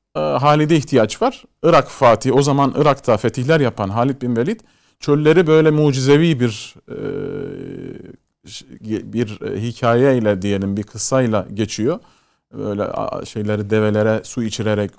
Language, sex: Turkish, male